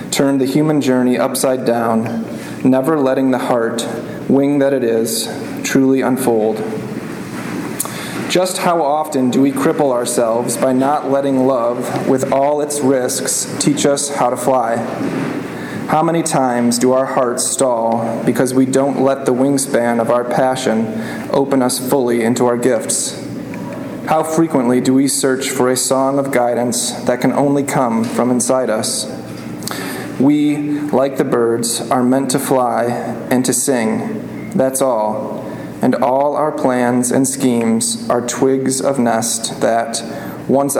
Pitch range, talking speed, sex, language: 120-140 Hz, 145 wpm, male, English